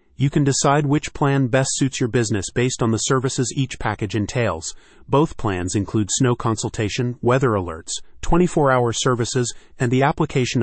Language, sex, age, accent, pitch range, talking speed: English, male, 30-49, American, 105-135 Hz, 160 wpm